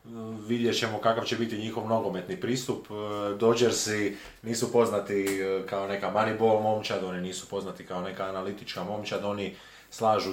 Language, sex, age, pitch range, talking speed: Croatian, male, 30-49, 95-115 Hz, 140 wpm